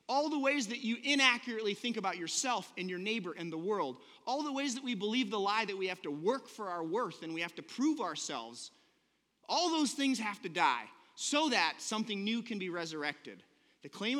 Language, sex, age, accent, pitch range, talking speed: English, male, 30-49, American, 190-275 Hz, 220 wpm